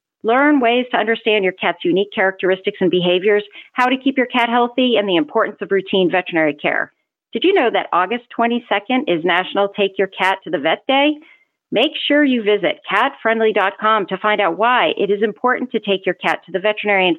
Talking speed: 200 wpm